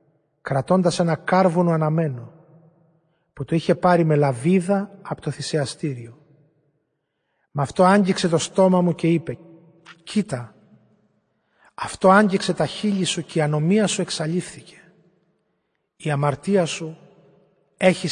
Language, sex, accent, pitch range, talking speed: Greek, male, native, 145-180 Hz, 120 wpm